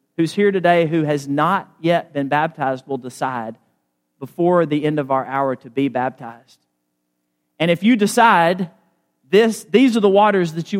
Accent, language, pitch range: American, English, 140-225 Hz